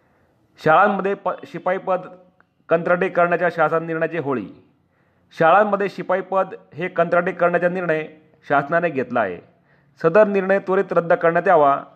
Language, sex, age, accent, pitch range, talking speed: Marathi, male, 40-59, native, 155-185 Hz, 115 wpm